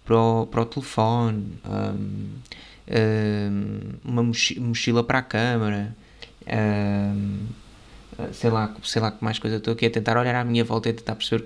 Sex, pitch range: male, 110-120 Hz